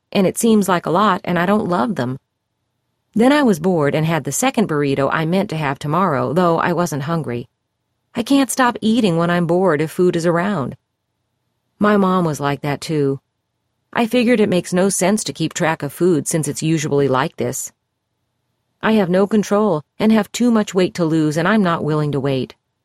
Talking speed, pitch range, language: 205 wpm, 135-195 Hz, English